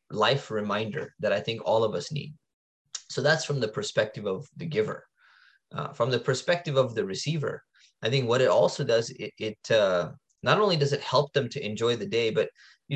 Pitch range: 110-145 Hz